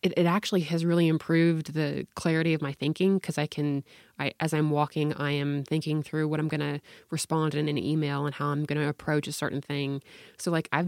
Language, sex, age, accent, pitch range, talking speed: English, female, 20-39, American, 150-175 Hz, 230 wpm